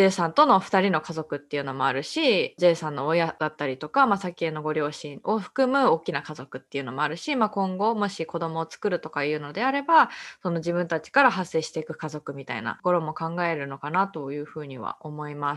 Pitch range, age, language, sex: 160-225 Hz, 20-39, Japanese, female